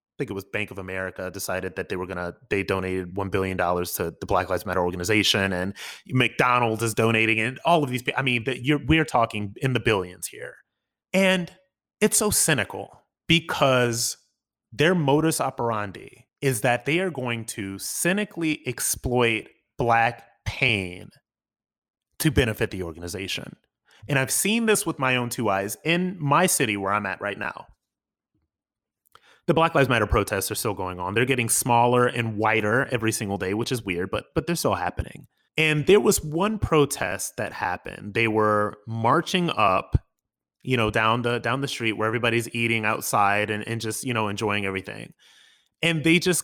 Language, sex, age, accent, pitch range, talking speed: English, male, 30-49, American, 105-145 Hz, 175 wpm